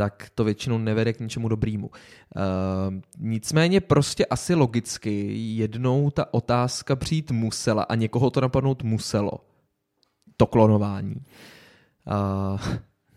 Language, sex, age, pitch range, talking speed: Czech, male, 20-39, 110-140 Hz, 115 wpm